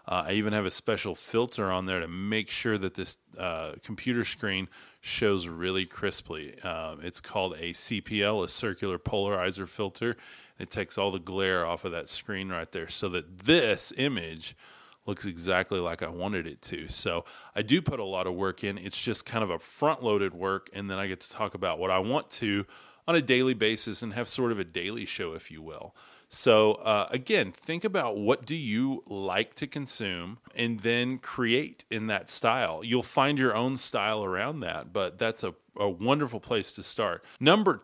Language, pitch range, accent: English, 95-120 Hz, American